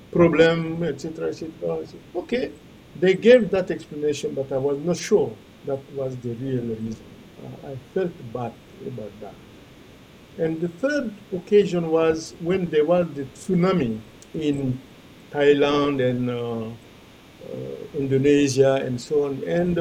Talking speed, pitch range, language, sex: 145 wpm, 140-195 Hz, English, male